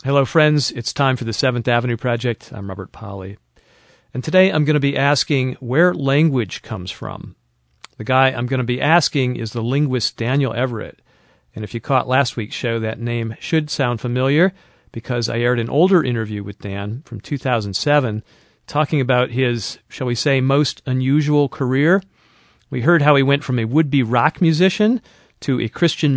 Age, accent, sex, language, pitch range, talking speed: 40-59, American, male, English, 115-150 Hz, 180 wpm